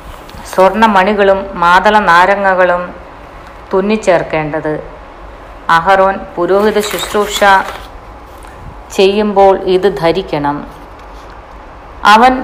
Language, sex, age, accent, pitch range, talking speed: Malayalam, female, 50-69, native, 175-210 Hz, 55 wpm